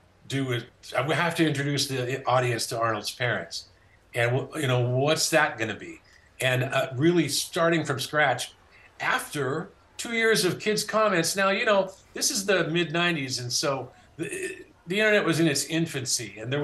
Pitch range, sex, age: 115-185 Hz, male, 50-69